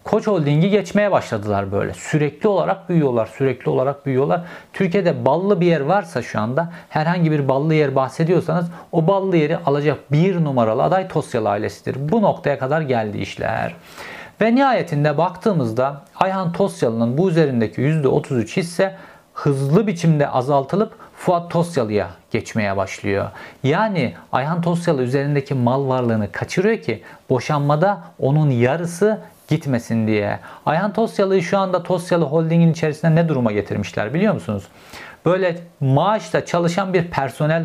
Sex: male